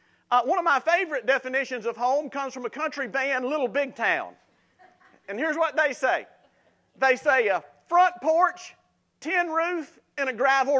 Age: 50-69